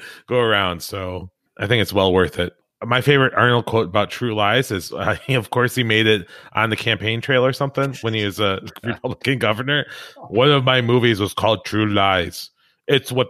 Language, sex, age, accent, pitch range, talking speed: English, male, 30-49, American, 95-125 Hz, 210 wpm